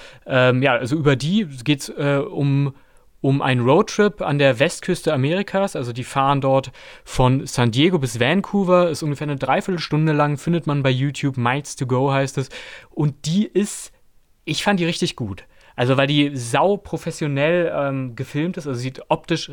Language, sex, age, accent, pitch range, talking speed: German, male, 30-49, German, 125-155 Hz, 180 wpm